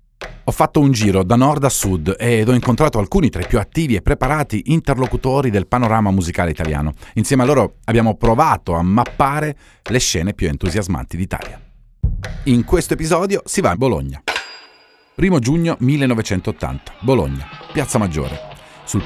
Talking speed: 155 wpm